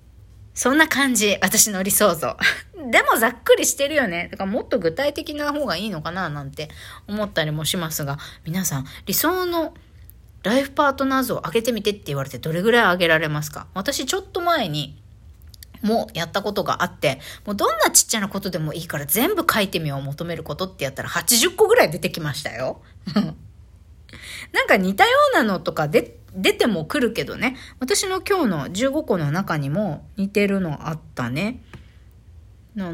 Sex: female